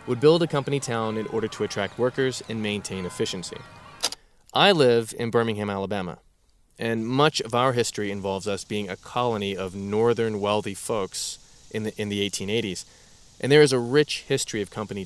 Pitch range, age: 105-135 Hz, 20-39